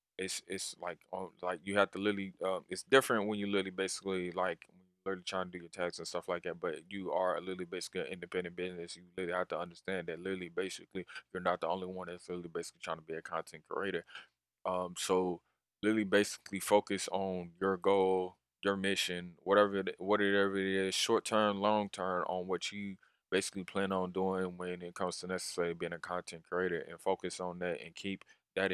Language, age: English, 20-39